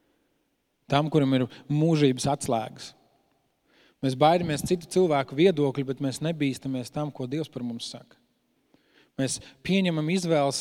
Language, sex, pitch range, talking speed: English, male, 130-150 Hz, 125 wpm